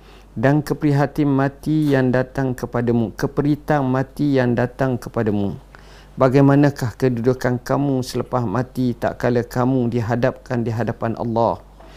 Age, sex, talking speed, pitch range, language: 50-69, male, 115 wpm, 120-140 Hz, Malay